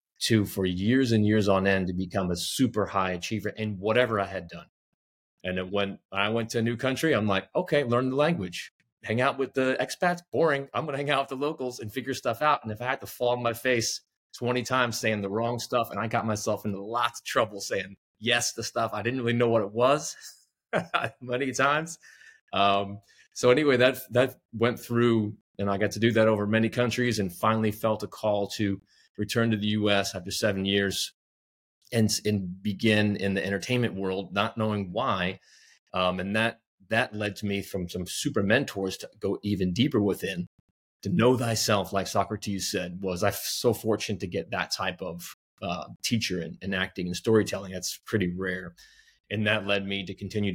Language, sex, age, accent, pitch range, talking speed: English, male, 30-49, American, 95-115 Hz, 205 wpm